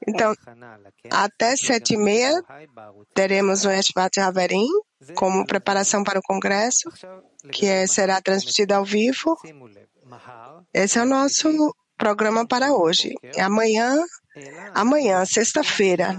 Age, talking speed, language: 20-39, 110 wpm, English